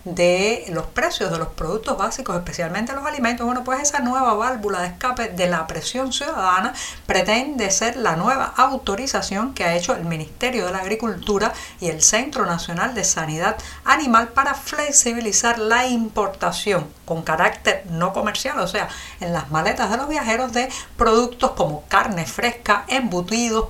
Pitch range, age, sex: 180-245 Hz, 50-69, female